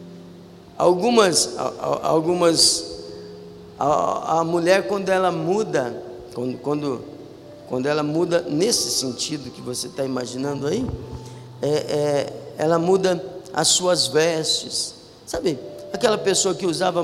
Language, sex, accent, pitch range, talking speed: Portuguese, male, Brazilian, 150-220 Hz, 105 wpm